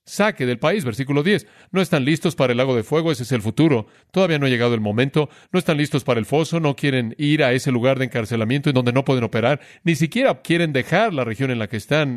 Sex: male